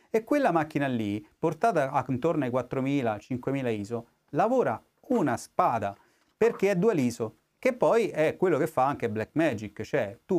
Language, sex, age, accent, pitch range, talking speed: Italian, male, 30-49, native, 120-165 Hz, 150 wpm